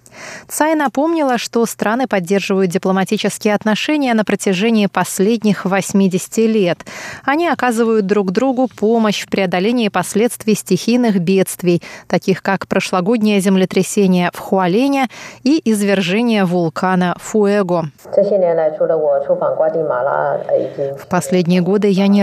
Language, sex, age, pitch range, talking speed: Russian, female, 20-39, 185-230 Hz, 100 wpm